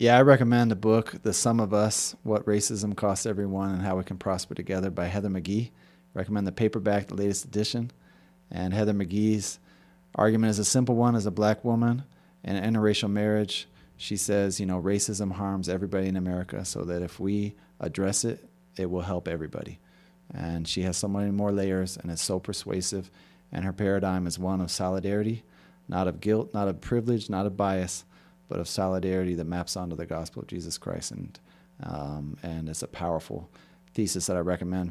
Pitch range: 90-105 Hz